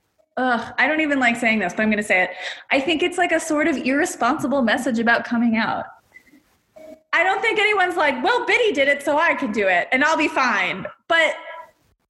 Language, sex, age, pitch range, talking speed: English, female, 20-39, 200-315 Hz, 220 wpm